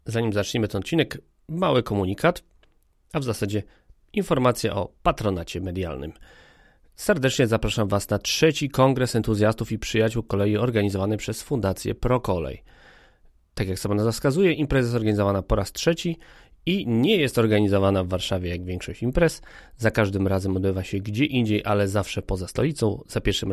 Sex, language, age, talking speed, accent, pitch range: male, Polish, 30-49, 150 wpm, native, 100-125 Hz